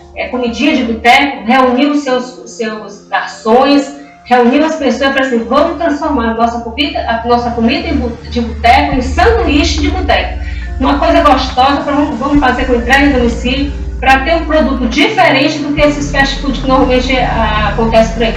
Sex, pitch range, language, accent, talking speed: female, 230-285 Hz, Portuguese, Brazilian, 165 wpm